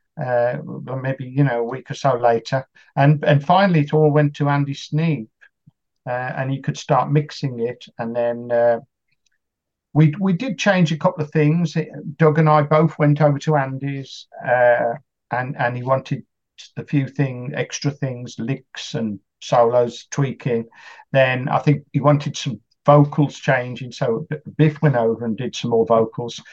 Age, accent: 50-69, British